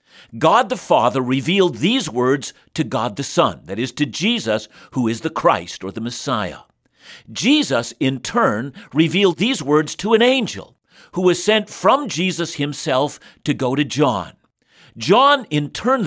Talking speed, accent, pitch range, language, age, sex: 160 wpm, American, 130-180 Hz, English, 50-69, male